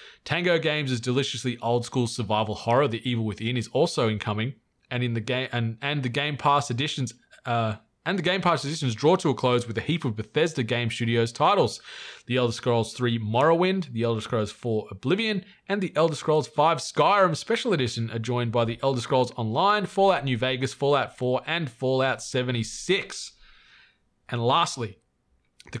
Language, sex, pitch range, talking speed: English, male, 115-150 Hz, 180 wpm